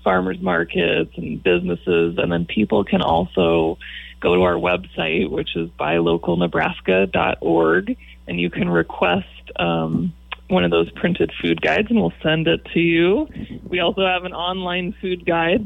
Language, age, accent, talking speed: English, 20-39, American, 155 wpm